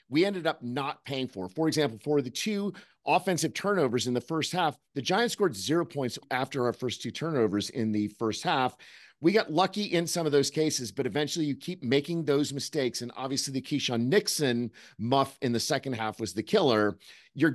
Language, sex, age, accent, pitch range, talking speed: English, male, 40-59, American, 115-150 Hz, 205 wpm